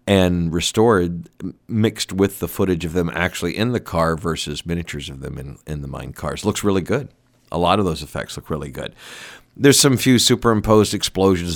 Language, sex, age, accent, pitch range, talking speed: English, male, 50-69, American, 80-105 Hz, 190 wpm